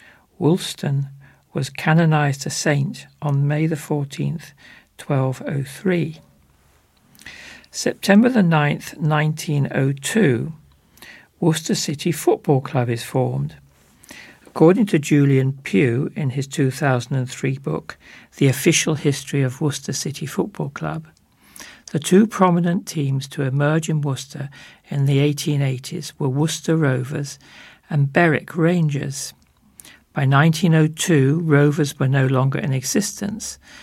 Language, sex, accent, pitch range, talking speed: English, male, British, 135-160 Hz, 110 wpm